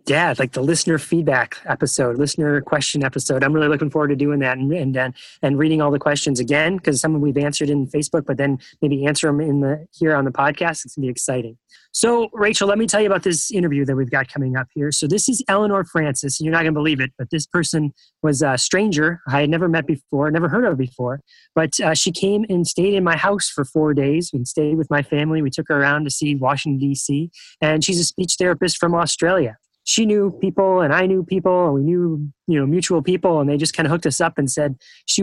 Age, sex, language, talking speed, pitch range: 20-39, male, English, 250 wpm, 145-185 Hz